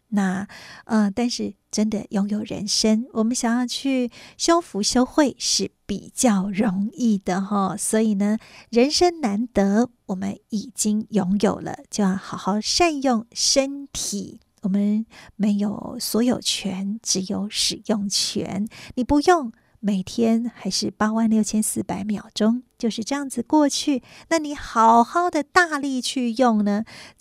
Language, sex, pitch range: Chinese, female, 205-245 Hz